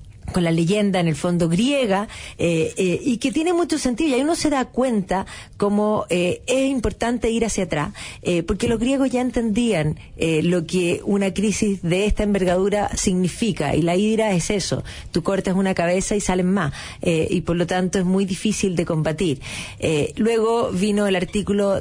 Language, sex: Spanish, female